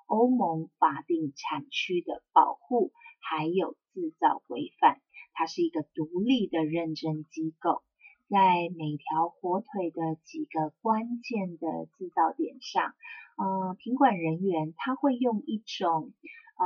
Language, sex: Chinese, female